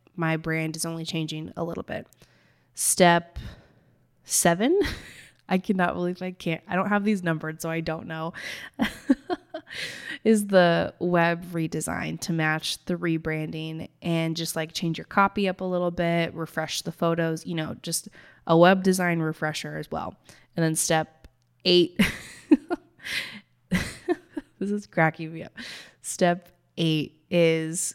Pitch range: 155-180 Hz